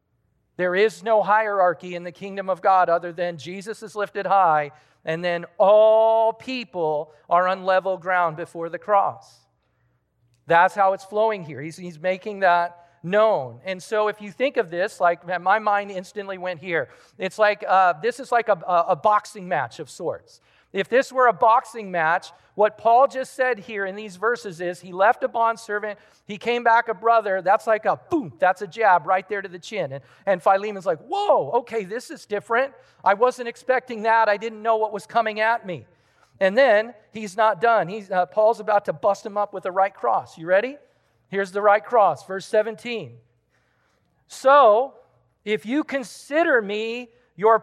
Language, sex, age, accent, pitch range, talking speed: English, male, 40-59, American, 180-225 Hz, 185 wpm